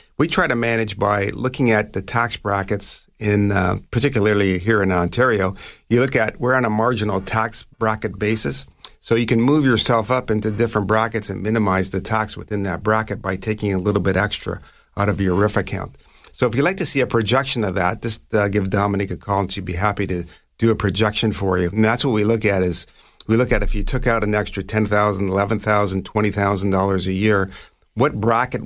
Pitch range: 95-110 Hz